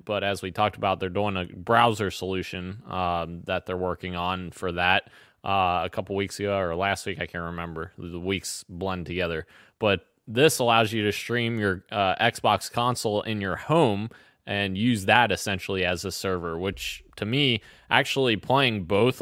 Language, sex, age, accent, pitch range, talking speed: English, male, 20-39, American, 95-115 Hz, 180 wpm